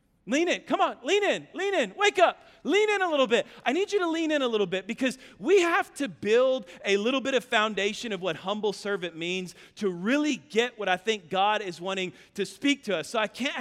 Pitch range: 190-255 Hz